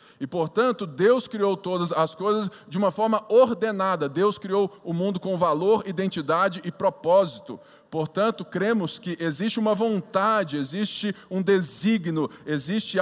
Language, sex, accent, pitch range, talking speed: Portuguese, male, Brazilian, 155-205 Hz, 145 wpm